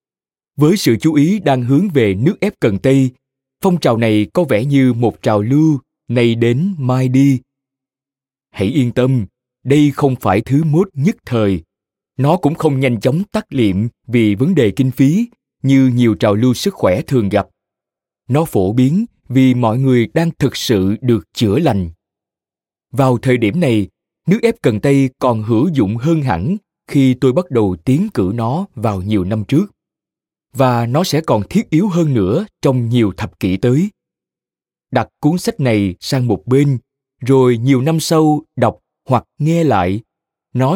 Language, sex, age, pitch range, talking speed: Vietnamese, male, 20-39, 110-150 Hz, 175 wpm